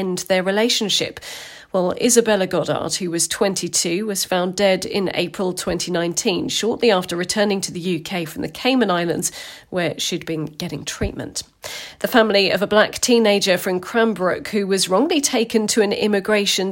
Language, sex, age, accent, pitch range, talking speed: English, female, 40-59, British, 175-225 Hz, 160 wpm